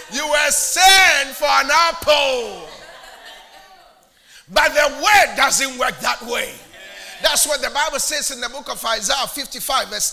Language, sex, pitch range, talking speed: English, male, 250-305 Hz, 150 wpm